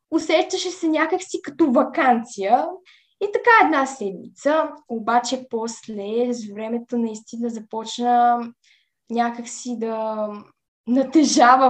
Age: 10-29